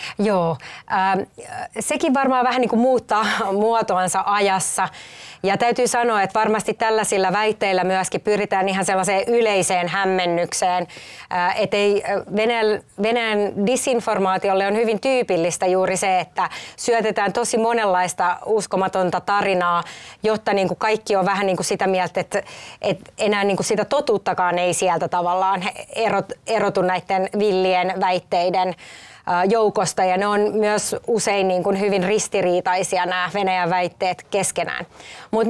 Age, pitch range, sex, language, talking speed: 30-49, 185-225 Hz, female, Finnish, 110 wpm